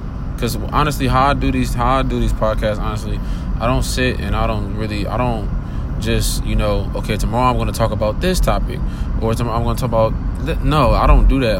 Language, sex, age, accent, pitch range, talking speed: English, male, 20-39, American, 100-115 Hz, 235 wpm